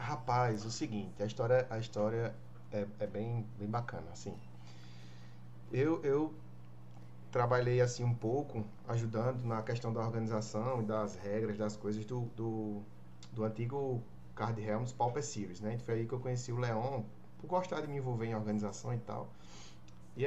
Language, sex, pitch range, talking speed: Portuguese, male, 100-130 Hz, 165 wpm